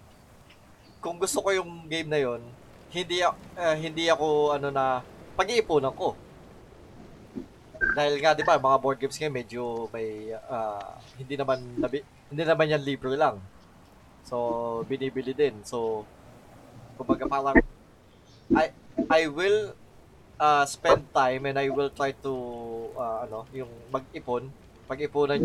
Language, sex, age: Filipino, male, 20-39